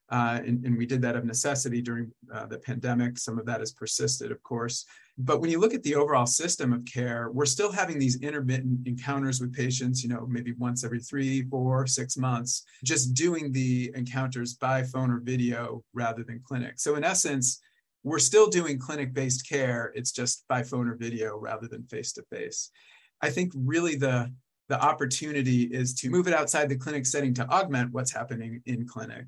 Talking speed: 195 wpm